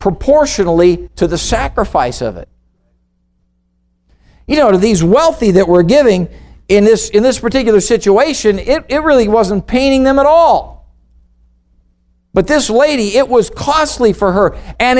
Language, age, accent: English, 50-69, American